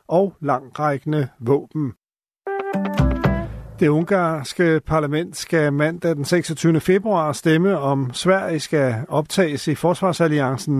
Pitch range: 145-180 Hz